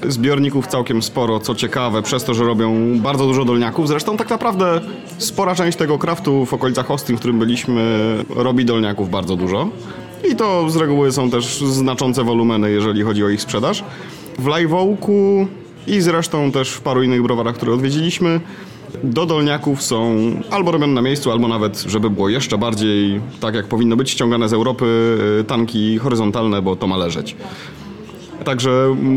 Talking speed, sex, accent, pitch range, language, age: 165 wpm, male, native, 115-150 Hz, Polish, 30-49